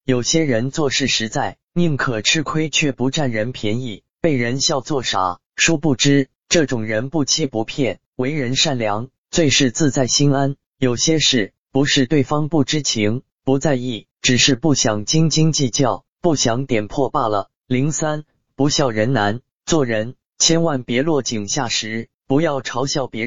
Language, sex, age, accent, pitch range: Chinese, male, 20-39, native, 120-145 Hz